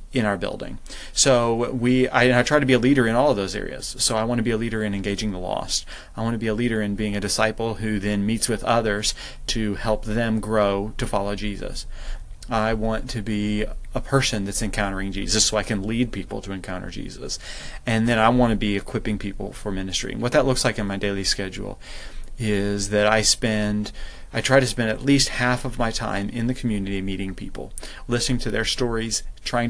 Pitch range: 105-120 Hz